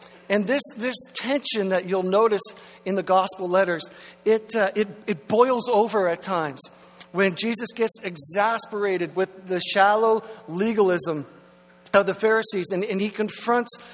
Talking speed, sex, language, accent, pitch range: 145 wpm, male, English, American, 180-220 Hz